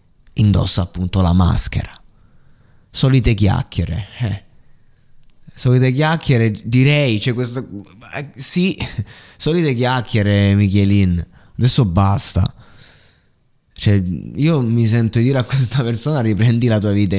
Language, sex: Italian, male